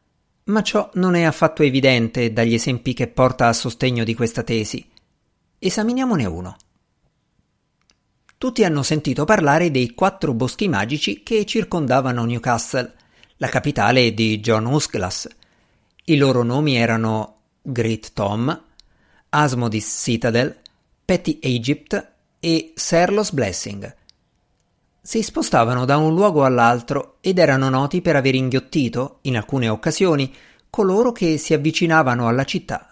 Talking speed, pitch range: 120 wpm, 115-160 Hz